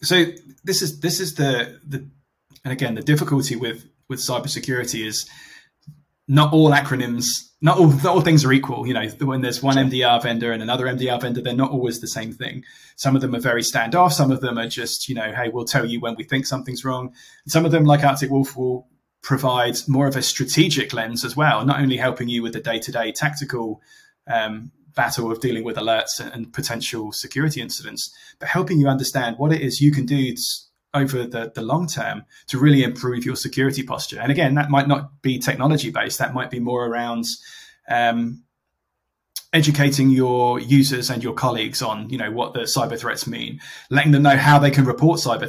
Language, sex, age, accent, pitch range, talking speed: English, male, 20-39, British, 120-140 Hz, 205 wpm